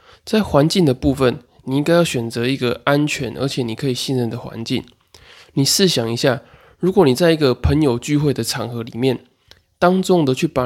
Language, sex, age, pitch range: Chinese, male, 20-39, 125-160 Hz